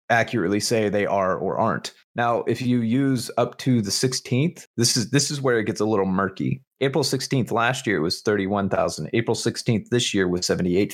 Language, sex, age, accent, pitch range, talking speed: English, male, 30-49, American, 95-120 Hz, 210 wpm